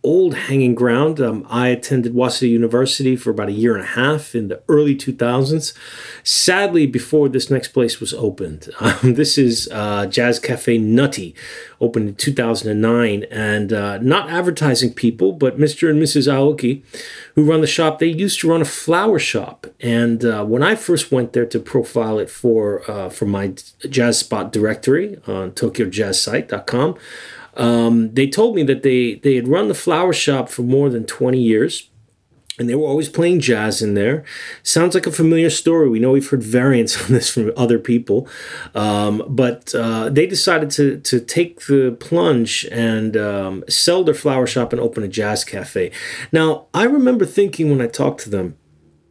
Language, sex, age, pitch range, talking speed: English, male, 30-49, 115-150 Hz, 180 wpm